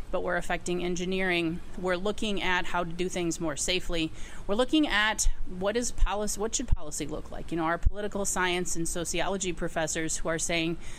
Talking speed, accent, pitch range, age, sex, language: 190 wpm, American, 165-200 Hz, 30-49, female, English